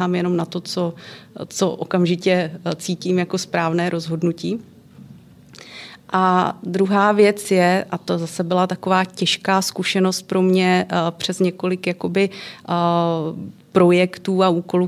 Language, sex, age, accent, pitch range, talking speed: Czech, female, 40-59, native, 165-185 Hz, 120 wpm